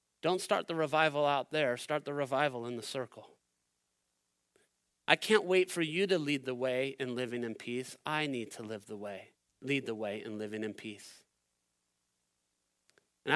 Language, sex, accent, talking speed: English, male, American, 175 wpm